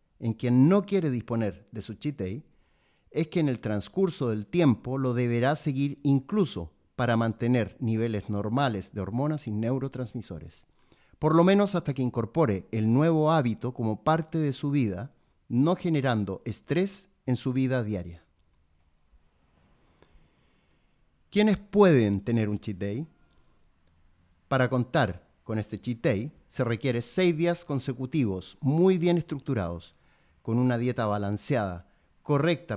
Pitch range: 105-145 Hz